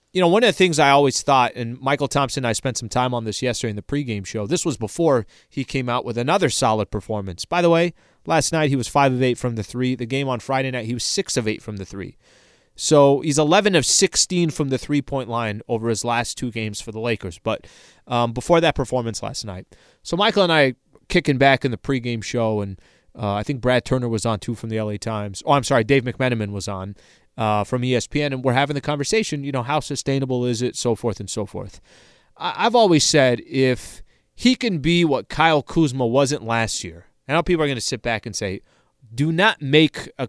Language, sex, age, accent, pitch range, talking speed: English, male, 20-39, American, 115-150 Hz, 240 wpm